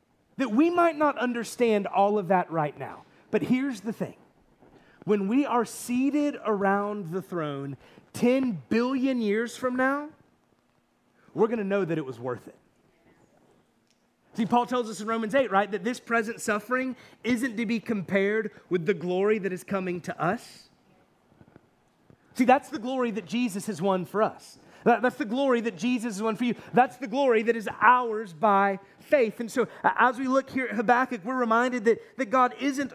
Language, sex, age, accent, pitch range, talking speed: English, male, 30-49, American, 185-245 Hz, 180 wpm